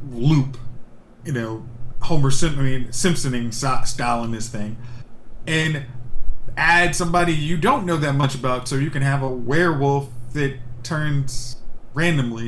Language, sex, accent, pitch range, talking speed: English, male, American, 120-165 Hz, 130 wpm